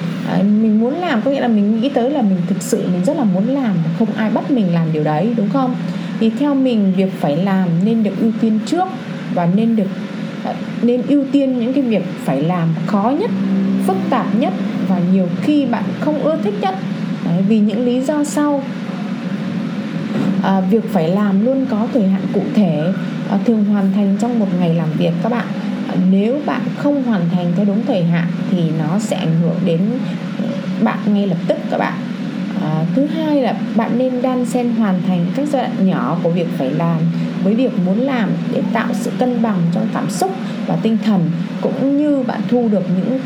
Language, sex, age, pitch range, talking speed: Vietnamese, female, 20-39, 190-235 Hz, 210 wpm